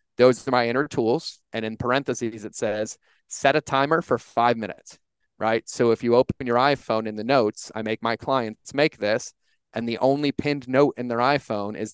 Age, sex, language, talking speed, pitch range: 30-49, male, English, 205 wpm, 110-130 Hz